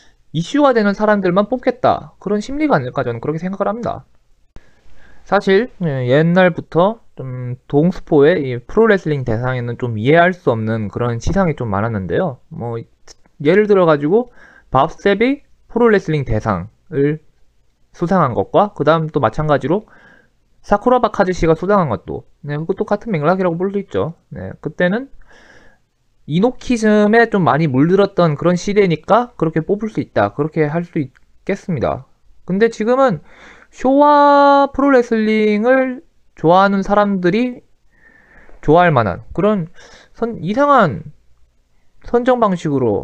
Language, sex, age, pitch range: Korean, male, 20-39, 145-215 Hz